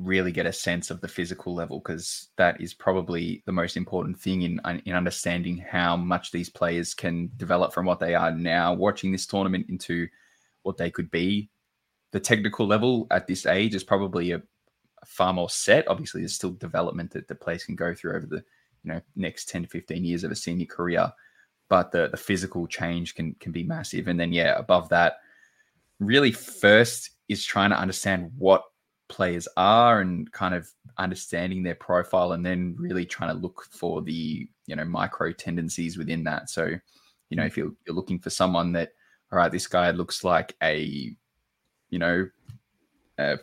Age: 20-39